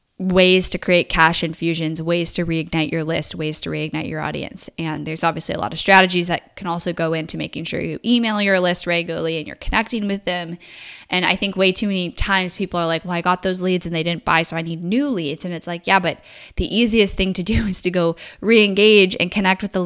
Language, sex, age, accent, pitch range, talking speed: English, female, 10-29, American, 170-210 Hz, 250 wpm